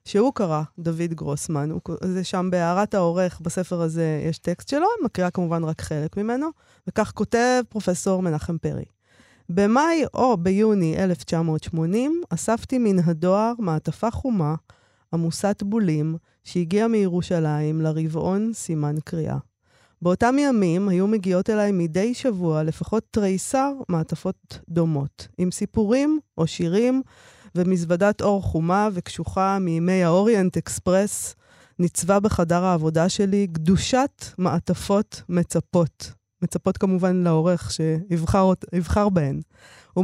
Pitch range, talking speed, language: 165-215 Hz, 115 wpm, Hebrew